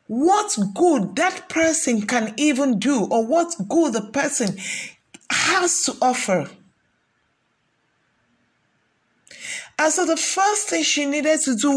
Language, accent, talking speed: English, Nigerian, 120 wpm